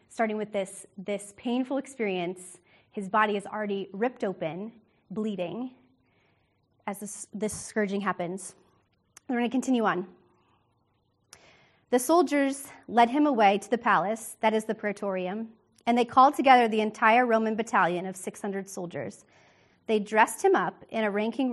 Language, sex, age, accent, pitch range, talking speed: English, female, 30-49, American, 195-235 Hz, 150 wpm